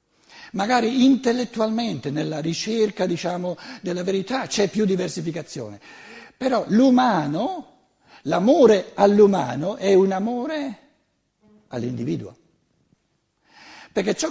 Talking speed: 85 wpm